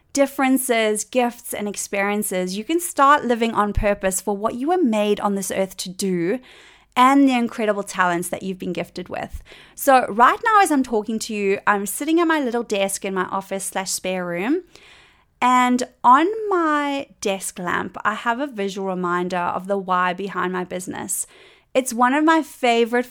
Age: 30-49